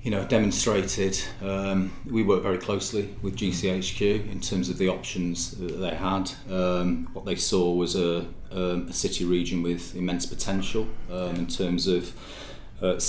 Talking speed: 160 wpm